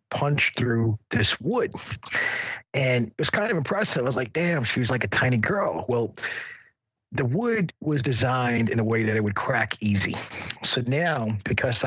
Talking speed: 180 wpm